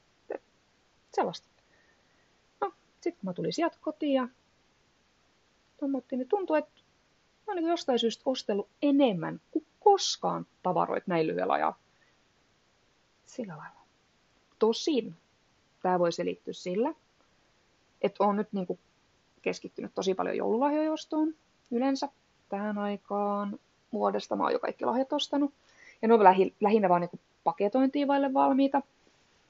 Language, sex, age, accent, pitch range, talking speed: Finnish, female, 30-49, native, 190-285 Hz, 115 wpm